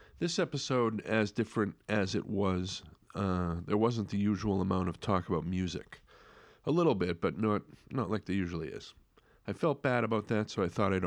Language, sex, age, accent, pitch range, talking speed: English, male, 40-59, American, 90-110 Hz, 195 wpm